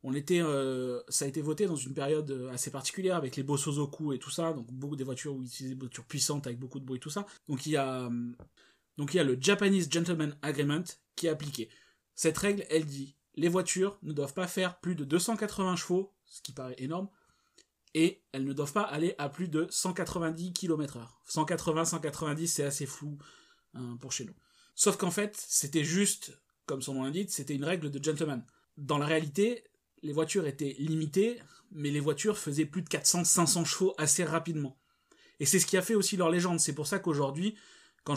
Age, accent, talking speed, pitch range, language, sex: 30-49, French, 210 wpm, 135-170 Hz, French, male